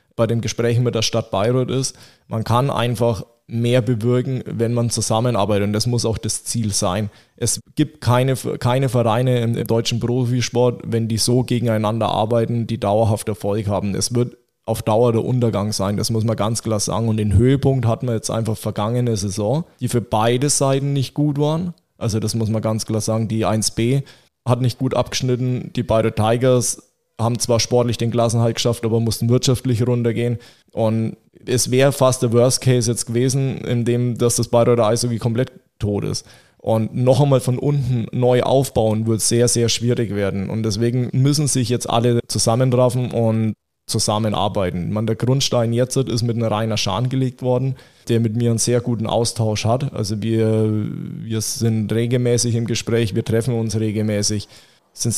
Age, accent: 20-39, German